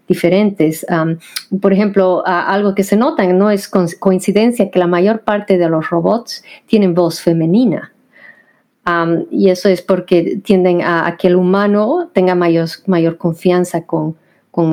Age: 40-59